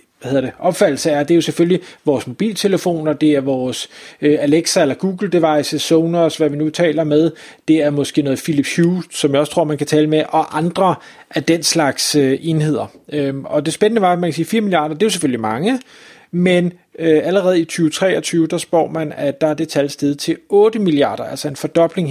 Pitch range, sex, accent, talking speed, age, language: 150-185 Hz, male, native, 215 wpm, 30-49, Danish